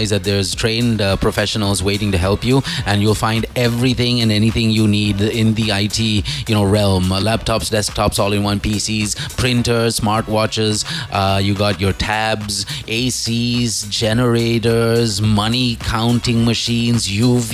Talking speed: 145 wpm